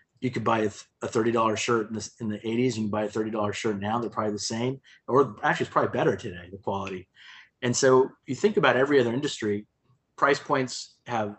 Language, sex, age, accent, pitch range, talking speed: English, male, 30-49, American, 105-120 Hz, 205 wpm